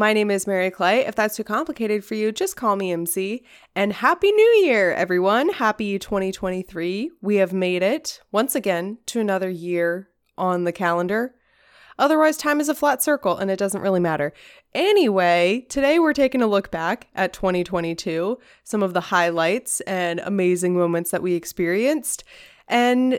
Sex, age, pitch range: female, 20-39, 190-275 Hz